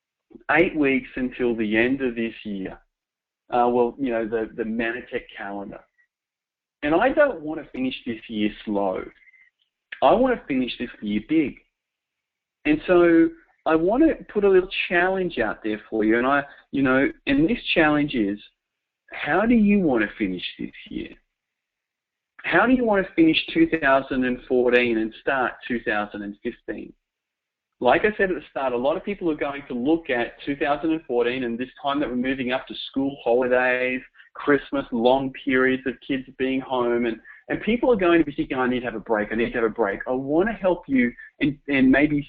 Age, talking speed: 40-59, 195 wpm